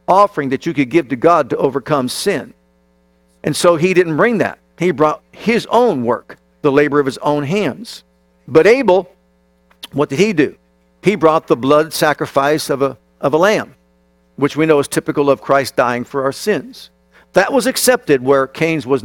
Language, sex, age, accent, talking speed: English, male, 50-69, American, 190 wpm